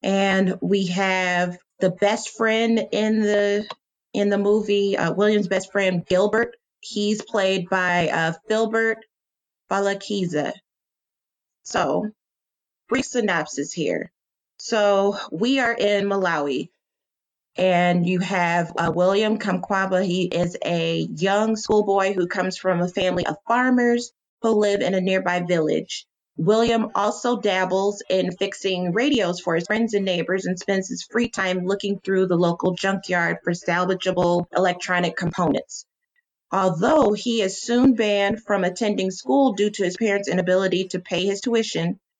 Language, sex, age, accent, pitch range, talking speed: English, female, 30-49, American, 180-210 Hz, 140 wpm